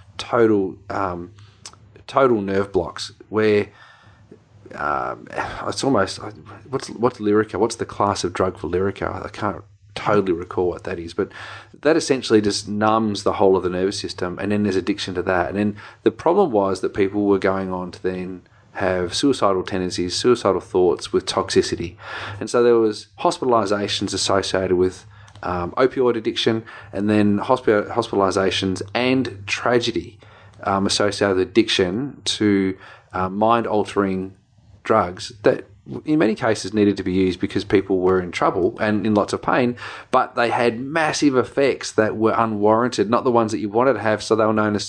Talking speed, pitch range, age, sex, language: 165 wpm, 95-115 Hz, 30-49, male, English